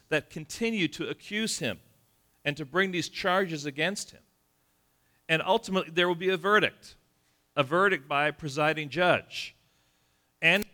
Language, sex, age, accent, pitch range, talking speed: English, male, 40-59, American, 150-200 Hz, 145 wpm